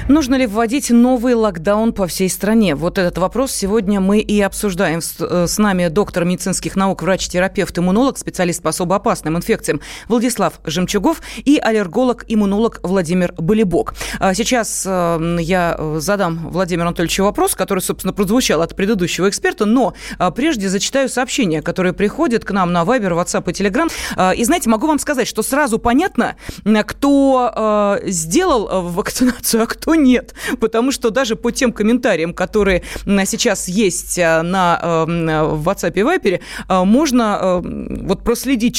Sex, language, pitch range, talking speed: female, Russian, 185-245 Hz, 140 wpm